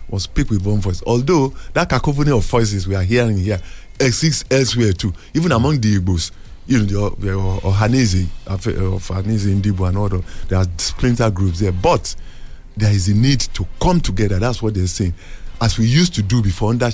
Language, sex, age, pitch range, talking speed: English, male, 50-69, 95-125 Hz, 190 wpm